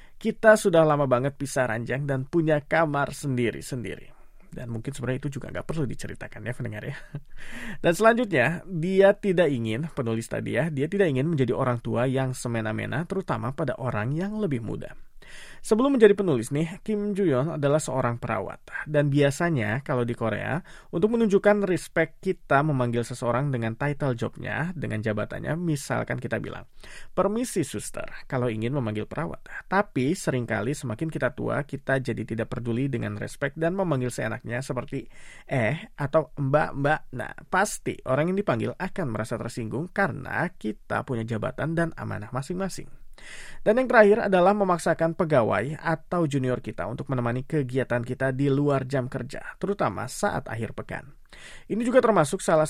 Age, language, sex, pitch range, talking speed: 20-39, Indonesian, male, 125-170 Hz, 155 wpm